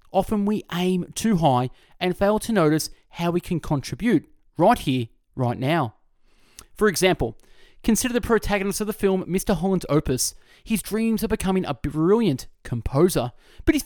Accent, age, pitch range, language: Australian, 20-39, 140-210 Hz, English